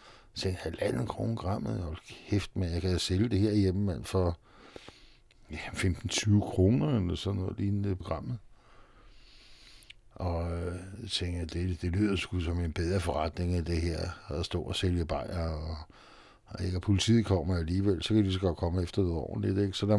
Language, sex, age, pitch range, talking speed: Danish, male, 60-79, 90-110 Hz, 200 wpm